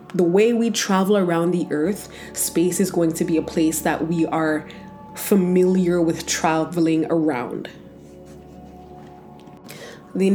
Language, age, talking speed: English, 20-39, 130 wpm